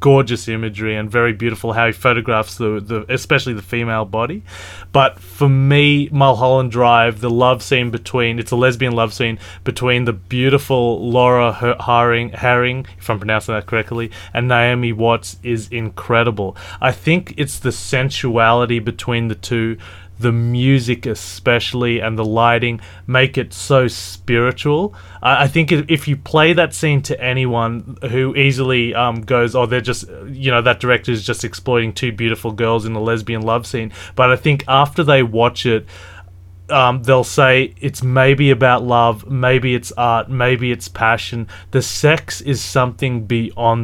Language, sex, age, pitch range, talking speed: English, male, 20-39, 115-130 Hz, 160 wpm